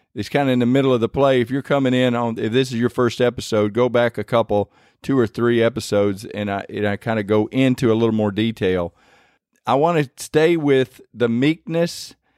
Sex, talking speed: male, 230 wpm